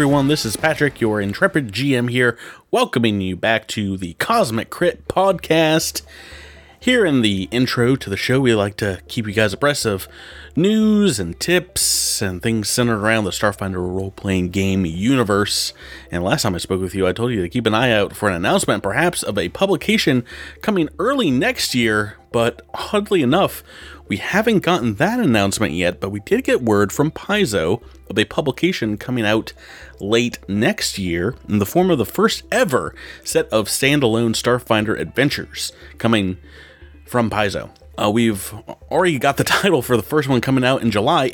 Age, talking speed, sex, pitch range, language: 30-49, 175 wpm, male, 100-135 Hz, English